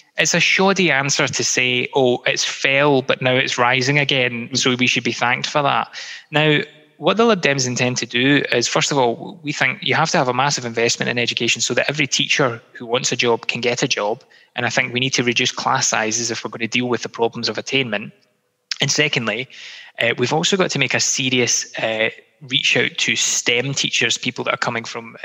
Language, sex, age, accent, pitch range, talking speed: English, male, 20-39, British, 115-135 Hz, 230 wpm